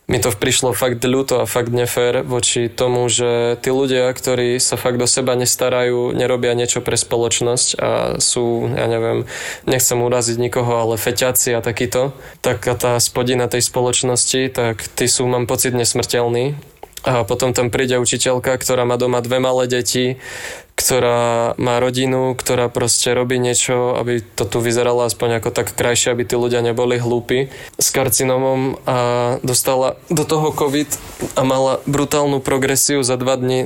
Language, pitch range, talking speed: Slovak, 120-130 Hz, 160 wpm